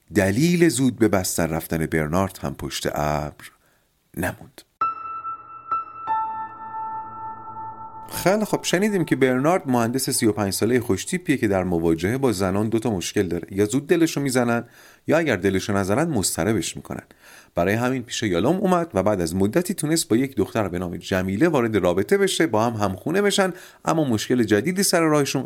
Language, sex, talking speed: Persian, male, 155 wpm